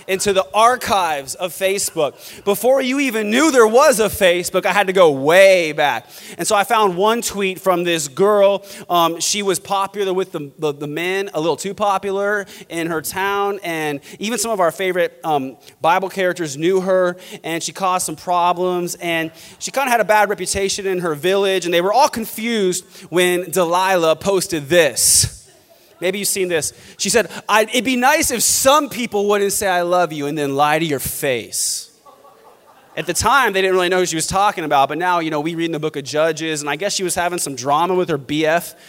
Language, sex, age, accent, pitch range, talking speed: English, male, 20-39, American, 170-210 Hz, 215 wpm